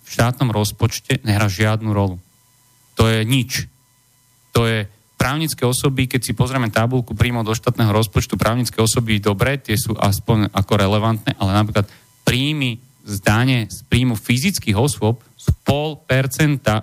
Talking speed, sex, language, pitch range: 145 wpm, male, Slovak, 110-135 Hz